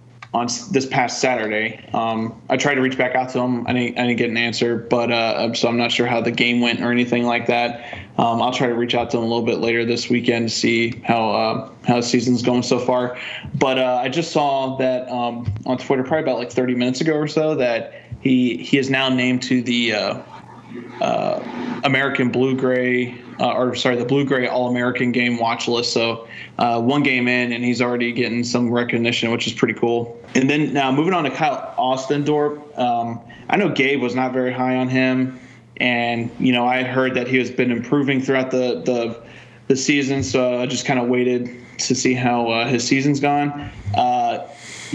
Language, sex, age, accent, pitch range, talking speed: English, male, 20-39, American, 120-130 Hz, 215 wpm